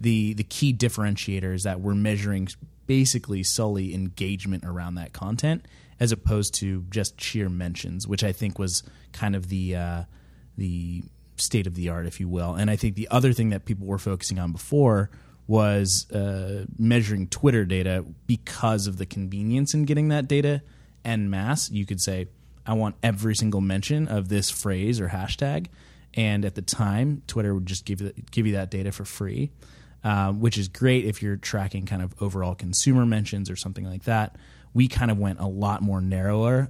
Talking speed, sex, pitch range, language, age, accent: 190 wpm, male, 95-110 Hz, English, 20-39, American